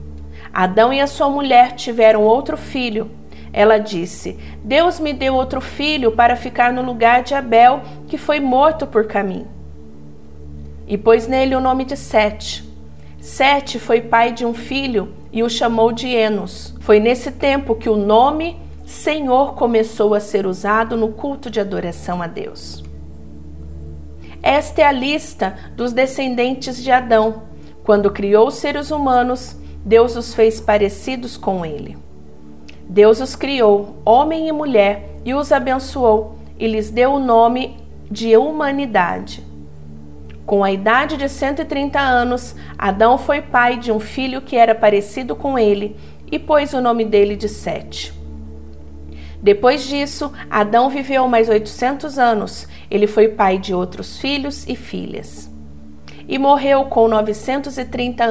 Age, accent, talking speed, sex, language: 50-69, Brazilian, 145 wpm, female, Portuguese